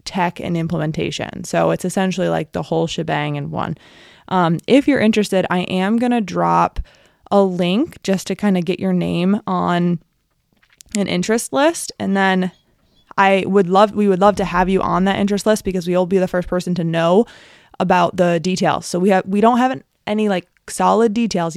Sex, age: female, 20-39